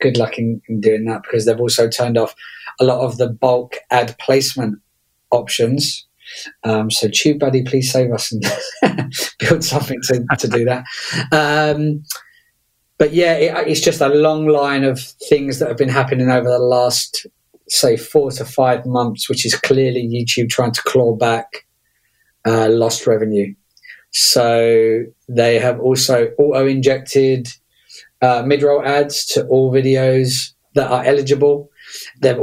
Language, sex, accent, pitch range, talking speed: English, male, British, 120-140 Hz, 150 wpm